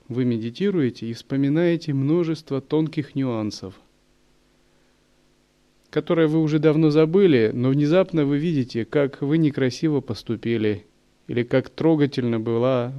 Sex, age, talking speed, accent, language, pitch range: male, 30-49, 110 wpm, native, Russian, 115-150 Hz